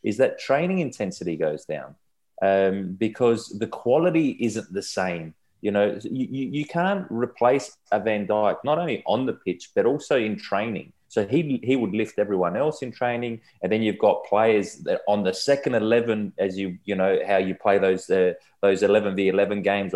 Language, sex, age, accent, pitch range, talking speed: English, male, 20-39, Australian, 100-125 Hz, 195 wpm